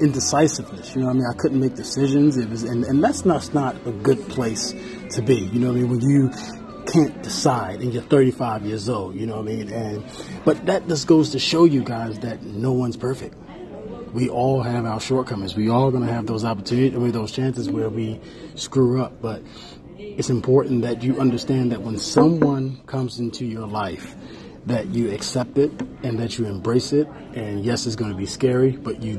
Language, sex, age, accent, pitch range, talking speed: English, male, 30-49, American, 115-135 Hz, 210 wpm